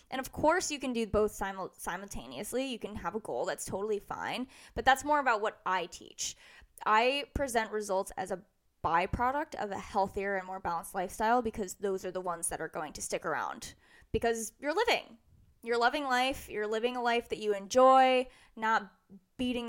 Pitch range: 205-265 Hz